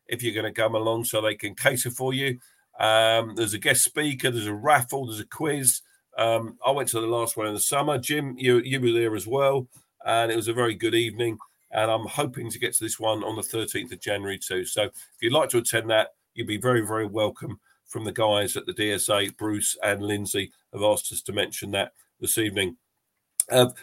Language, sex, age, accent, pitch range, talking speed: English, male, 50-69, British, 110-135 Hz, 230 wpm